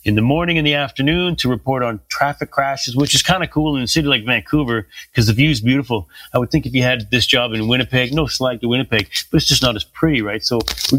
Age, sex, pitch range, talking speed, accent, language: 30-49, male, 115-145 Hz, 270 wpm, American, English